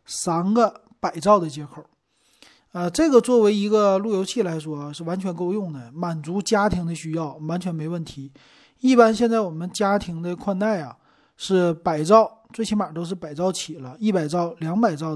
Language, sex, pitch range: Chinese, male, 160-210 Hz